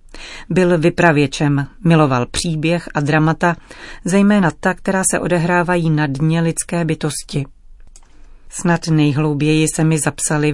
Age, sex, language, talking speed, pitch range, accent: 40-59, female, Czech, 115 wpm, 145-170 Hz, native